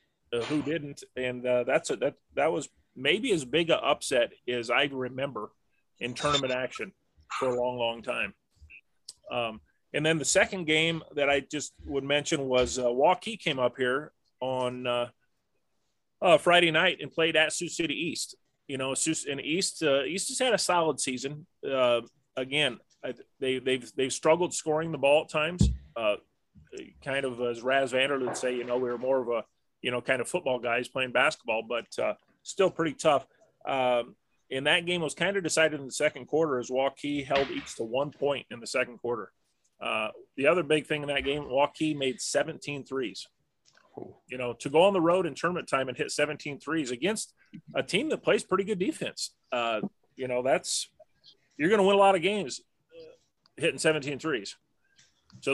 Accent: American